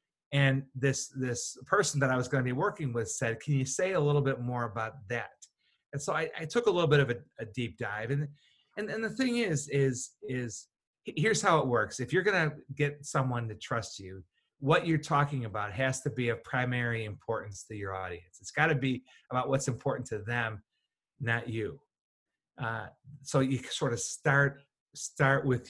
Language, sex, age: English, male, 30-49